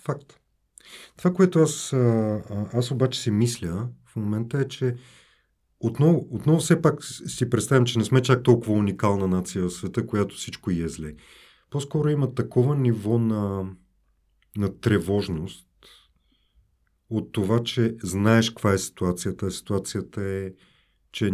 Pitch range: 100-130 Hz